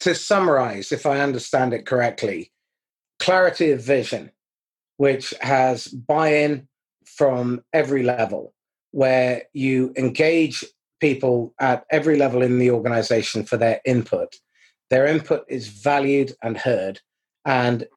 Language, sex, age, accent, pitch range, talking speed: English, male, 30-49, British, 120-140 Hz, 120 wpm